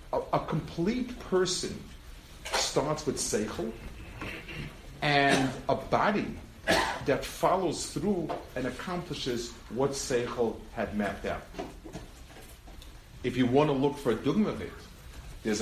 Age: 50-69